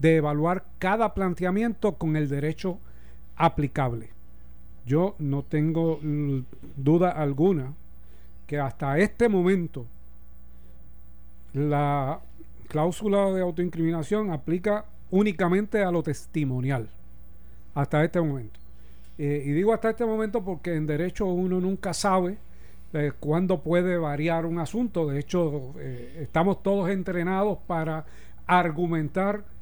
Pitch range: 135-185 Hz